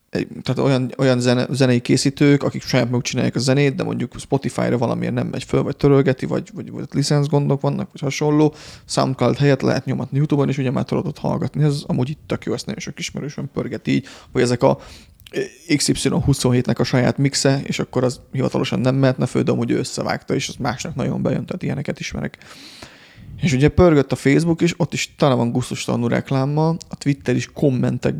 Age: 30-49